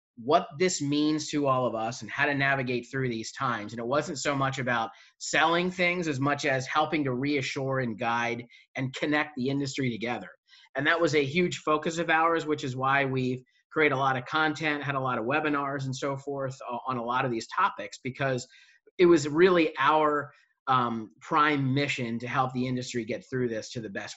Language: English